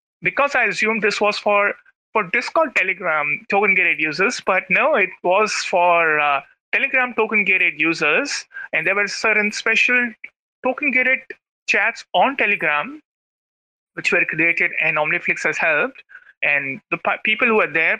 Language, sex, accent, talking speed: English, male, Indian, 140 wpm